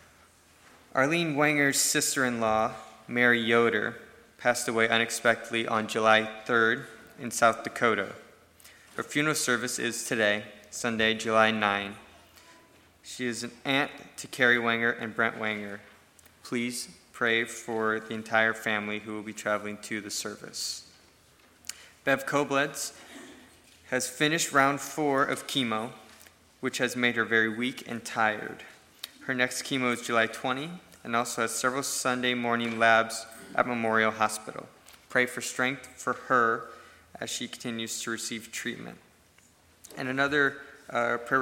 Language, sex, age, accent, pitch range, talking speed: English, male, 20-39, American, 110-130 Hz, 135 wpm